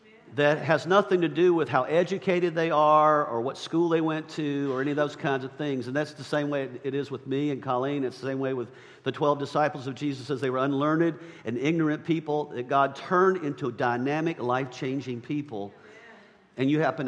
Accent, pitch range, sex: American, 125-165 Hz, male